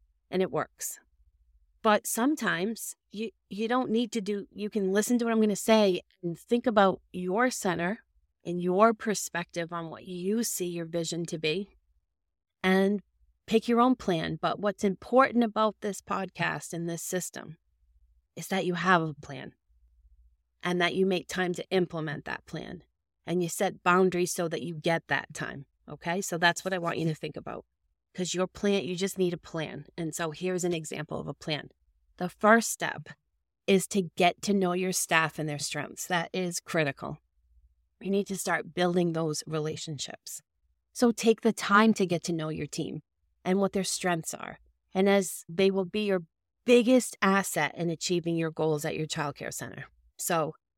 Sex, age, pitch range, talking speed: female, 30-49, 155-195 Hz, 185 wpm